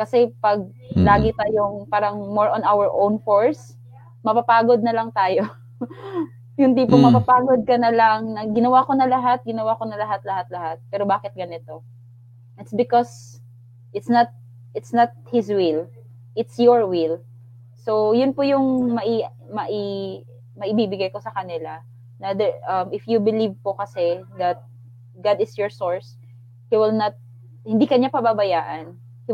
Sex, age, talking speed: female, 20-39, 150 wpm